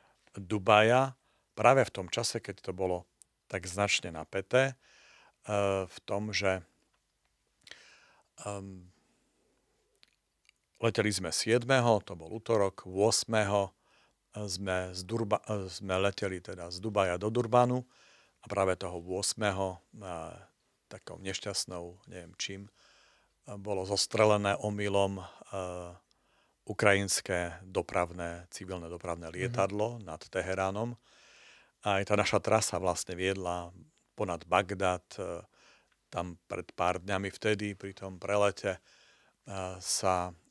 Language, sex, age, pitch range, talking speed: Slovak, male, 50-69, 90-105 Hz, 100 wpm